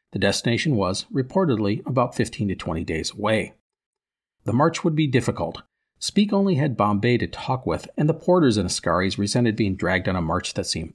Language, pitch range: English, 100-130 Hz